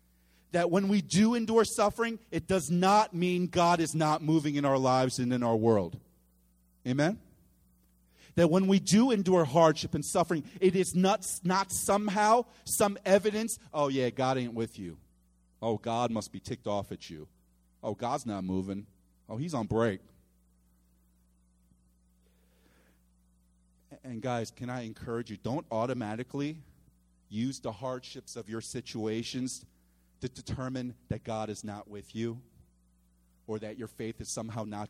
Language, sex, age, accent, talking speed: English, male, 40-59, American, 150 wpm